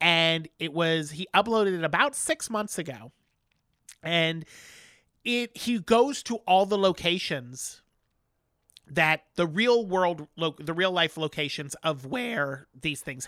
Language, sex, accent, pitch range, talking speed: English, male, American, 150-190 Hz, 140 wpm